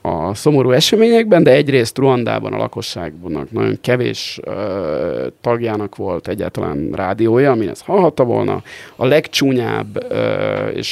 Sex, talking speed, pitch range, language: male, 125 wpm, 110-135 Hz, Hungarian